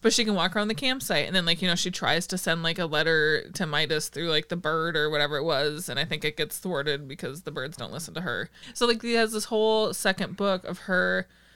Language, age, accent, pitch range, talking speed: English, 20-39, American, 160-205 Hz, 270 wpm